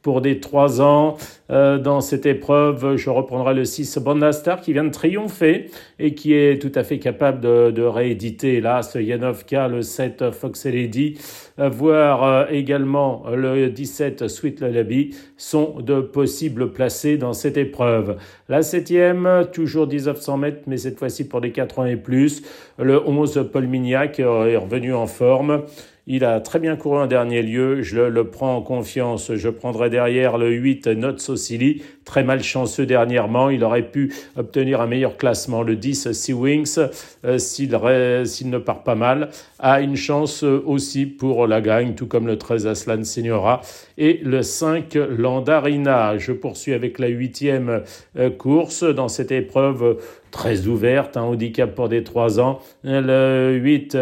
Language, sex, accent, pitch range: French, male, French, 120-145 Hz